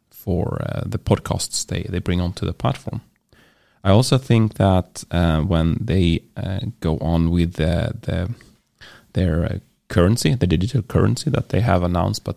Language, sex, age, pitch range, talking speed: English, male, 30-49, 85-110 Hz, 165 wpm